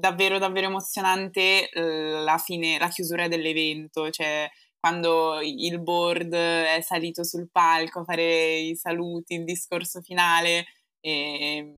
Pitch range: 160-190 Hz